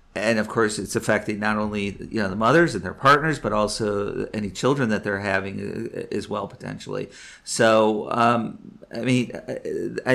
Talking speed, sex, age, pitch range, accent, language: 165 wpm, male, 40-59, 105-130 Hz, American, English